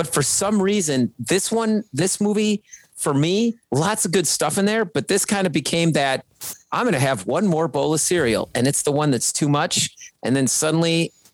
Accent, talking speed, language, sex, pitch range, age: American, 215 wpm, English, male, 125-185 Hz, 40-59